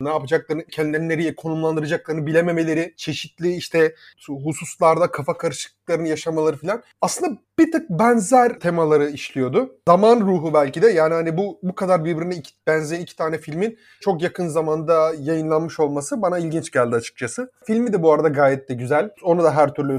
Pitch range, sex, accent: 145-195 Hz, male, native